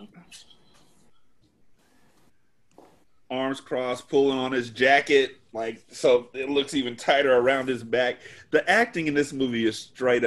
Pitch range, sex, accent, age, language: 110-140 Hz, male, American, 30-49, English